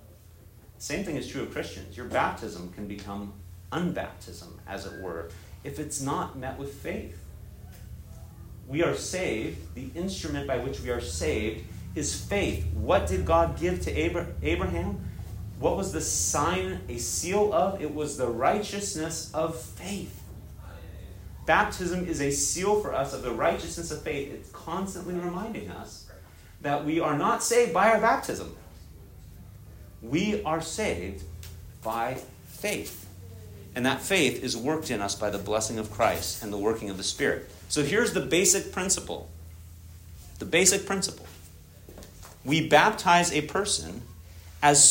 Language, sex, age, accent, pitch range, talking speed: English, male, 40-59, American, 85-145 Hz, 150 wpm